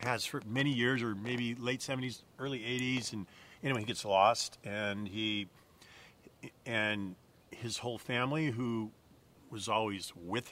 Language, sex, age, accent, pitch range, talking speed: English, male, 50-69, American, 100-125 Hz, 145 wpm